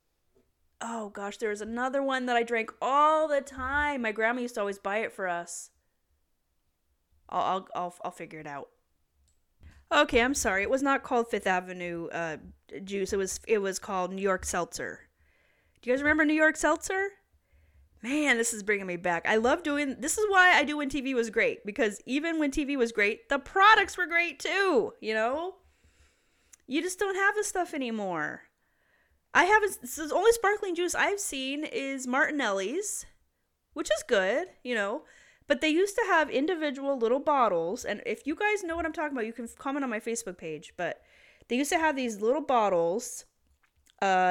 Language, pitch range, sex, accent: English, 185-300 Hz, female, American